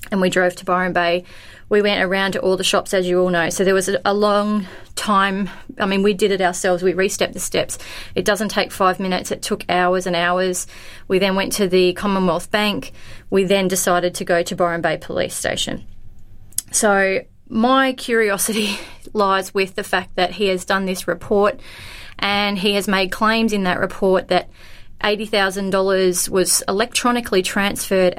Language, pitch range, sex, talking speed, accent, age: English, 180-205 Hz, female, 185 wpm, Australian, 30-49